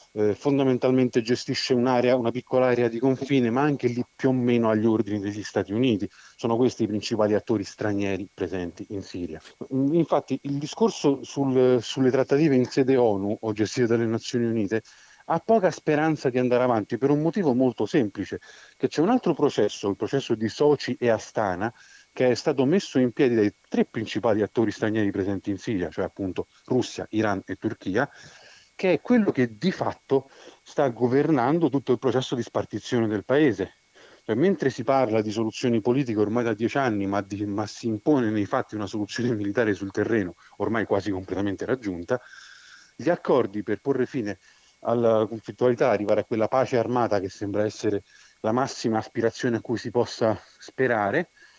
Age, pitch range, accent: 40-59, 105-135 Hz, native